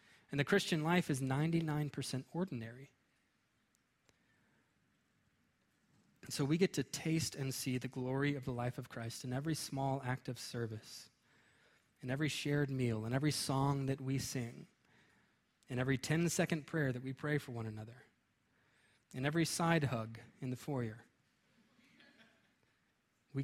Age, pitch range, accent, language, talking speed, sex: 20-39, 120-150 Hz, American, English, 140 wpm, male